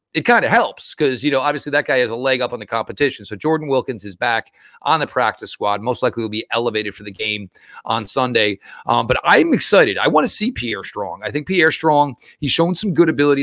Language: English